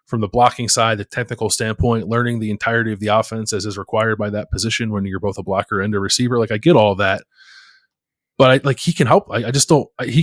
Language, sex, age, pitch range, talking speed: English, male, 20-39, 100-125 Hz, 260 wpm